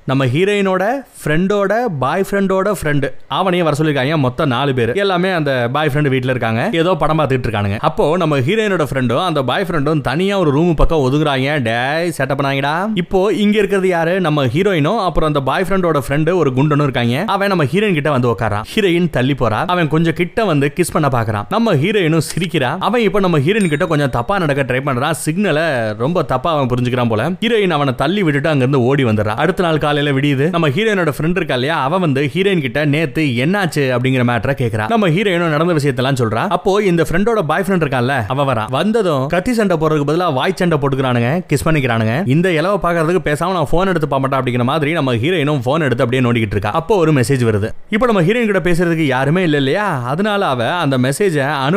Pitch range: 135-180 Hz